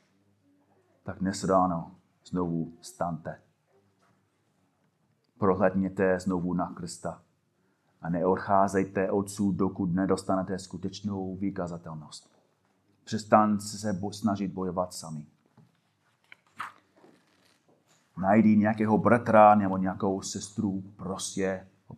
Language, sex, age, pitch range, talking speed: Czech, male, 30-49, 90-95 Hz, 80 wpm